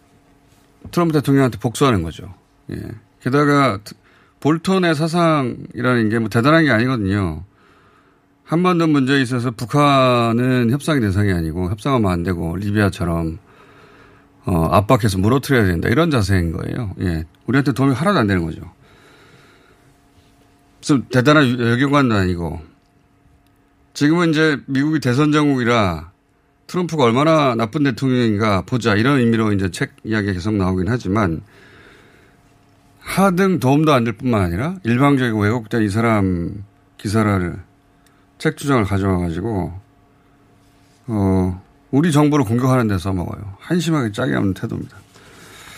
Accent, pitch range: native, 100-140 Hz